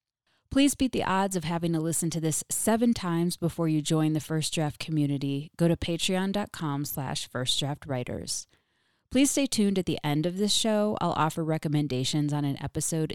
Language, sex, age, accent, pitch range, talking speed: English, female, 30-49, American, 140-165 Hz, 185 wpm